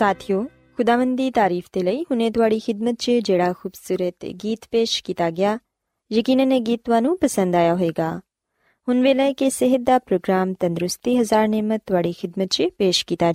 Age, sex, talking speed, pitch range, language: 20-39, female, 160 wpm, 185-260 Hz, Punjabi